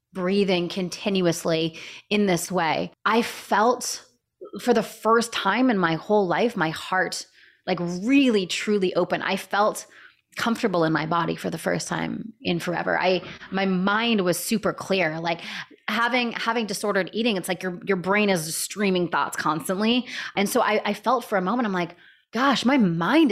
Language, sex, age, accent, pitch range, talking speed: English, female, 20-39, American, 175-215 Hz, 170 wpm